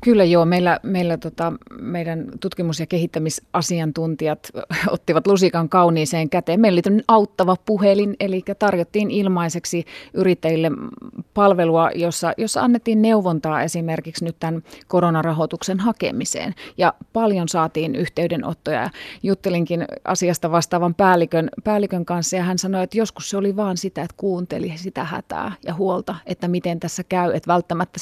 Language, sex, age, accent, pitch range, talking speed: Finnish, female, 30-49, native, 165-190 Hz, 135 wpm